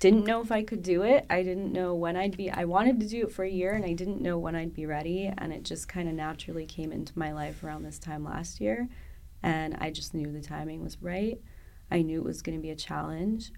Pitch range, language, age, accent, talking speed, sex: 155-185 Hz, English, 20-39, American, 265 wpm, female